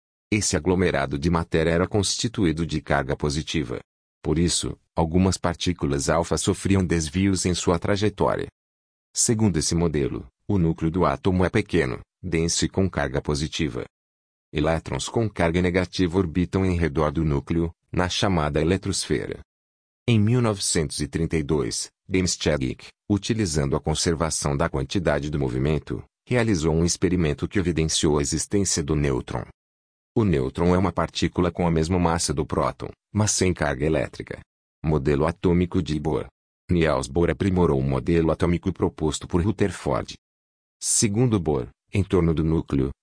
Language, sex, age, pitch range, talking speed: Portuguese, male, 40-59, 75-95 Hz, 135 wpm